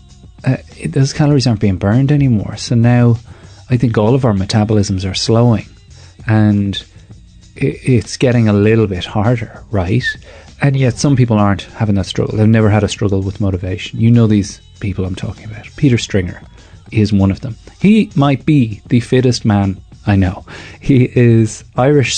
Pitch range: 95-120 Hz